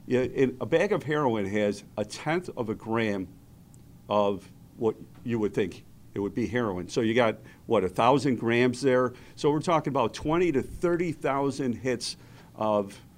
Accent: American